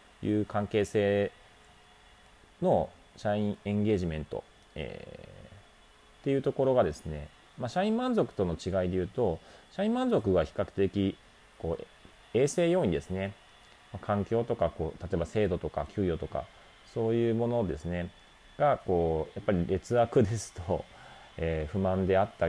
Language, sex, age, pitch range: Japanese, male, 30-49, 85-115 Hz